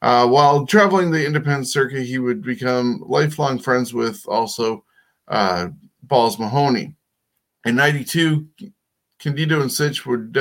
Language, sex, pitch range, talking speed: English, male, 125-160 Hz, 125 wpm